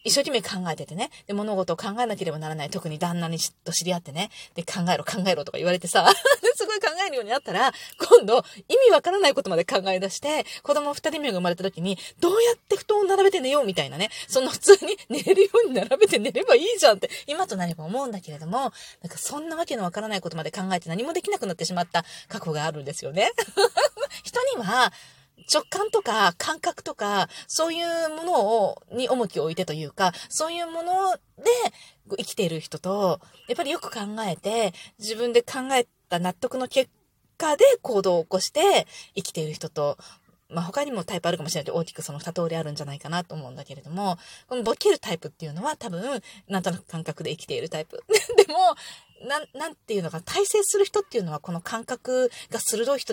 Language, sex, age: Japanese, female, 30-49